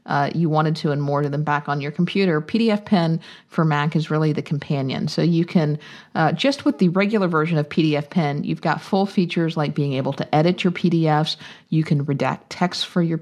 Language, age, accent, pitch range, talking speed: English, 50-69, American, 150-185 Hz, 225 wpm